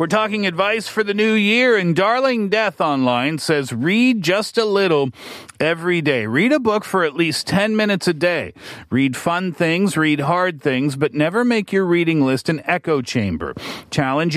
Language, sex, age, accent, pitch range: Korean, male, 40-59, American, 135-185 Hz